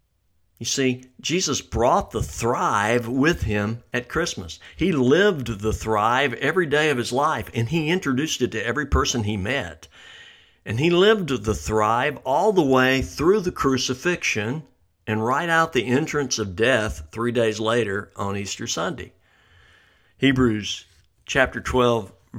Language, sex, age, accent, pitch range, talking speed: English, male, 60-79, American, 95-135 Hz, 145 wpm